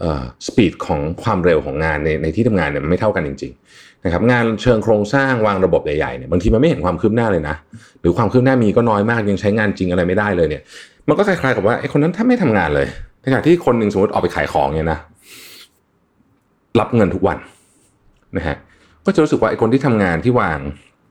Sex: male